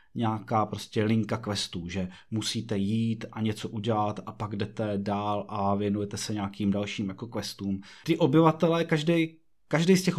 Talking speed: 155 wpm